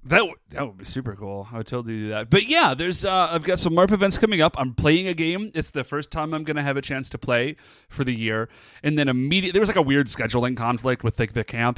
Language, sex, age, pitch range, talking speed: English, male, 30-49, 120-160 Hz, 310 wpm